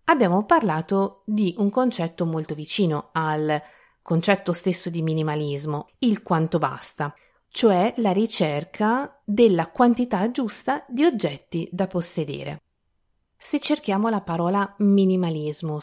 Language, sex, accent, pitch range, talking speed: Italian, female, native, 160-200 Hz, 115 wpm